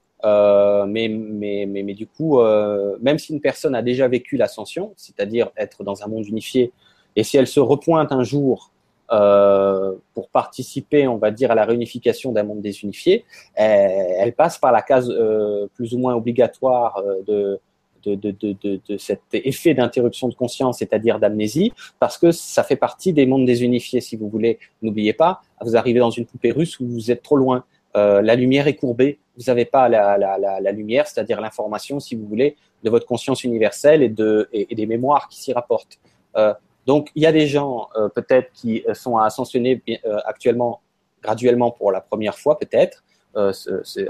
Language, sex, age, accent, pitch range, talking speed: French, male, 20-39, French, 105-135 Hz, 195 wpm